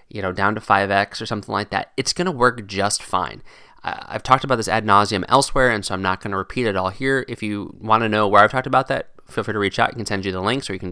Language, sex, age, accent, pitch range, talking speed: English, male, 20-39, American, 100-125 Hz, 315 wpm